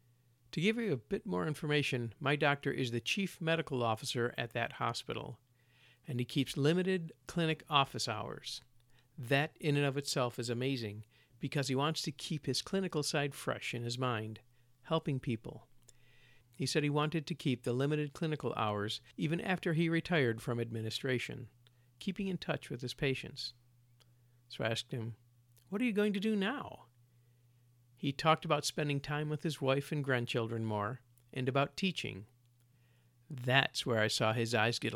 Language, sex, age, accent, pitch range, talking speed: English, male, 50-69, American, 120-150 Hz, 170 wpm